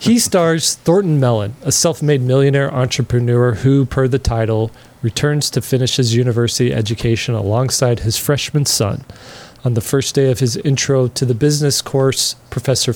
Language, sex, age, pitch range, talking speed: English, male, 30-49, 120-140 Hz, 155 wpm